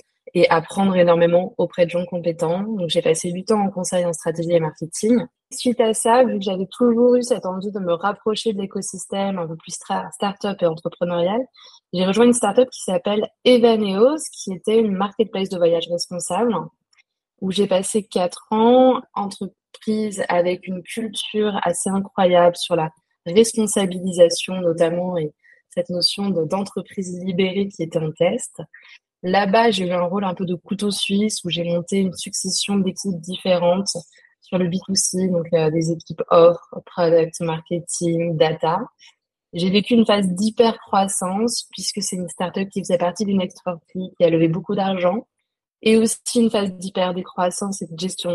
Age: 20-39